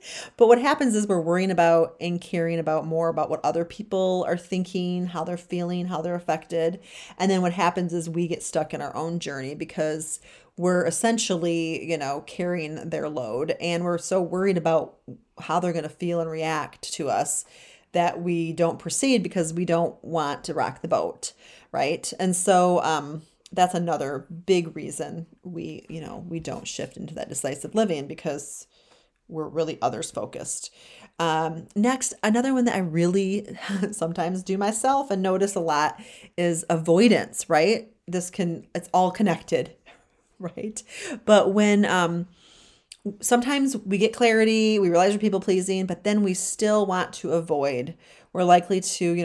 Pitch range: 165-195 Hz